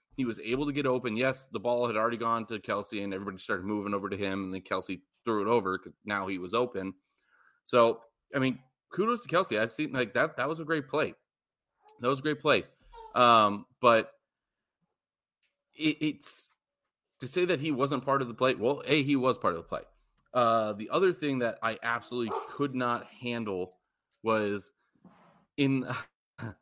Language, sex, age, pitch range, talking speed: English, male, 30-49, 105-130 Hz, 190 wpm